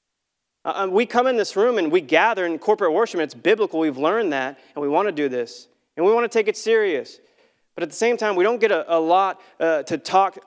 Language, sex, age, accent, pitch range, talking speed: English, male, 30-49, American, 140-185 Hz, 250 wpm